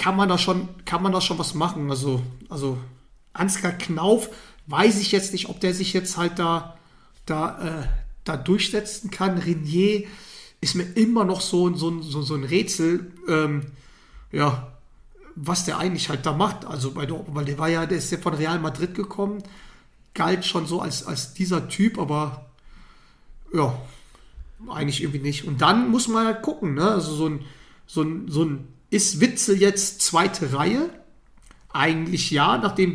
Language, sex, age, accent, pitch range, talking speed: German, male, 30-49, German, 155-190 Hz, 175 wpm